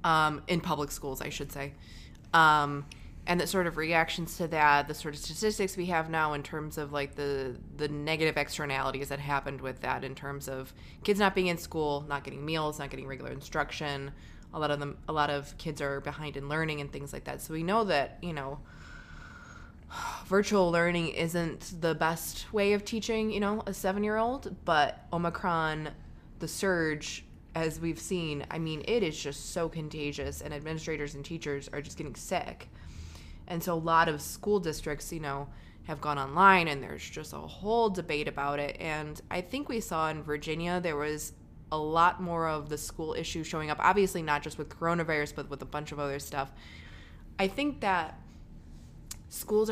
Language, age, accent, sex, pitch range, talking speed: English, 20-39, American, female, 145-175 Hz, 195 wpm